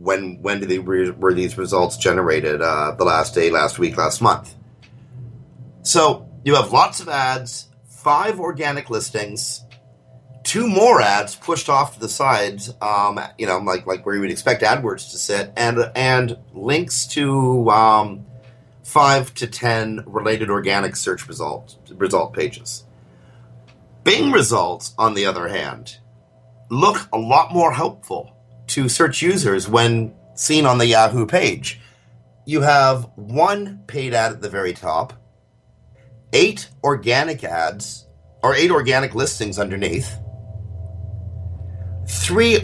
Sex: male